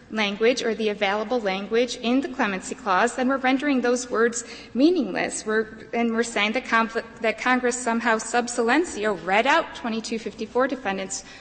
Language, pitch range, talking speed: English, 210-255 Hz, 155 wpm